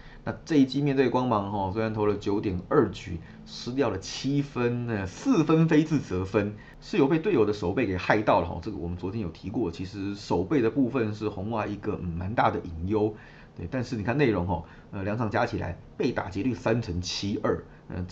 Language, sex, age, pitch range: Chinese, male, 30-49, 95-115 Hz